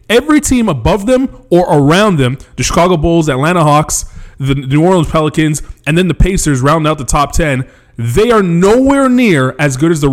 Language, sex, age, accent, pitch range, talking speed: English, male, 20-39, American, 145-195 Hz, 195 wpm